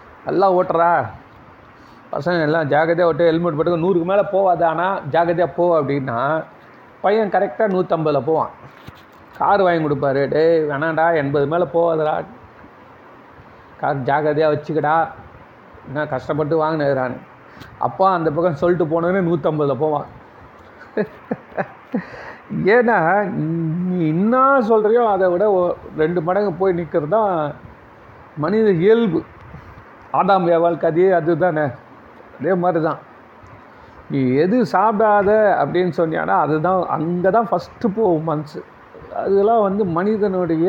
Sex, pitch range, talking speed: male, 155-190 Hz, 110 wpm